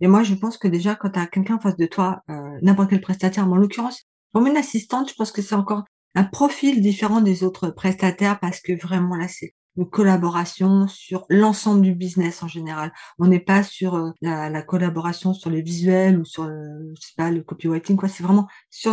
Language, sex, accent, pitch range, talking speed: French, female, French, 170-205 Hz, 225 wpm